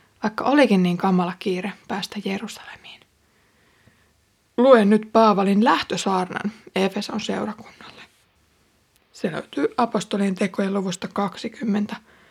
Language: Finnish